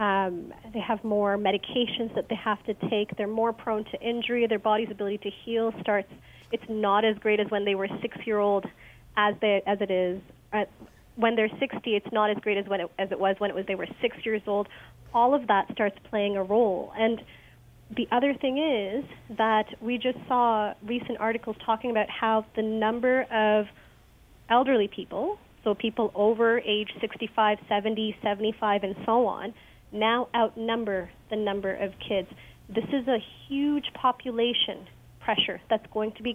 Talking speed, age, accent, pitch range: 180 wpm, 30-49, American, 210-235 Hz